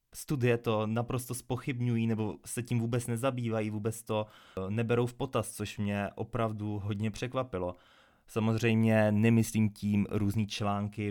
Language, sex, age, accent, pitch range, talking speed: Czech, male, 20-39, native, 100-115 Hz, 130 wpm